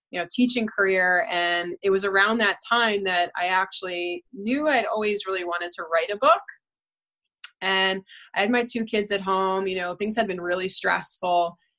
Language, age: English, 20-39